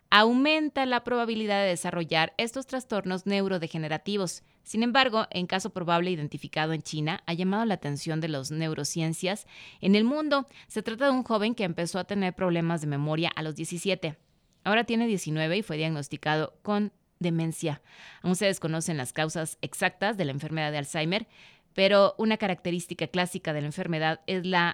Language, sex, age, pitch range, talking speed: Spanish, female, 30-49, 160-205 Hz, 165 wpm